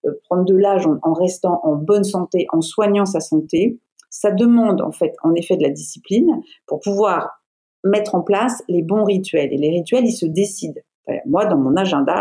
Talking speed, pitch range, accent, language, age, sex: 190 wpm, 160-210 Hz, French, French, 50-69, female